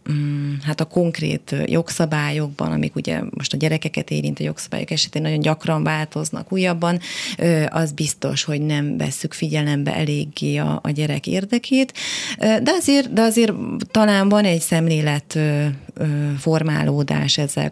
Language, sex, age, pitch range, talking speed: Hungarian, female, 30-49, 135-165 Hz, 130 wpm